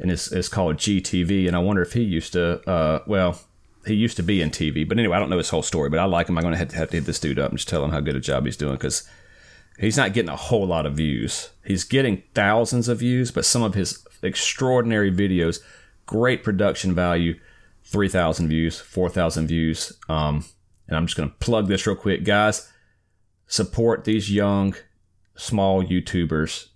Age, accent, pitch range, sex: 30-49, American, 90-110 Hz, male